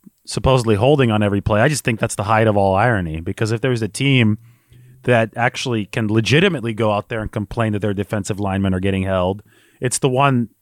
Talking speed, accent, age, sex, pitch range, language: 215 wpm, American, 30-49, male, 110-135 Hz, English